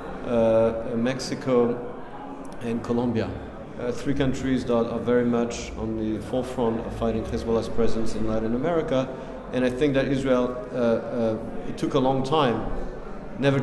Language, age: Spanish, 40-59